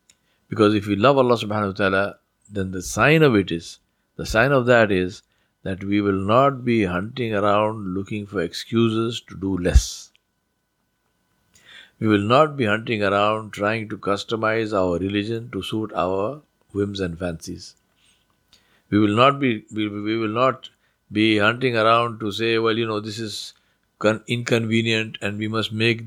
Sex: male